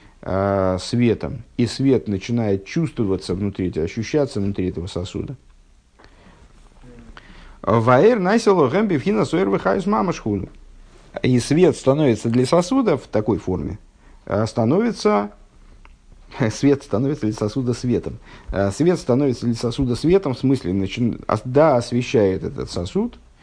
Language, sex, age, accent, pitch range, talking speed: Russian, male, 50-69, native, 100-140 Hz, 90 wpm